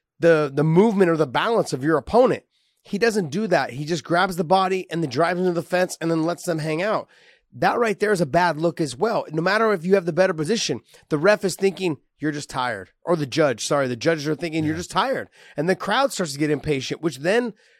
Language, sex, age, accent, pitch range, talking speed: English, male, 30-49, American, 160-210 Hz, 255 wpm